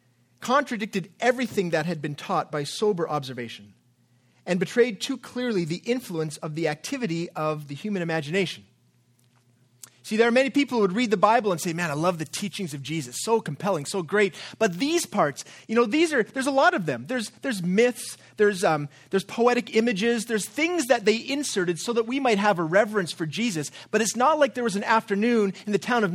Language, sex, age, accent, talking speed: English, male, 30-49, American, 210 wpm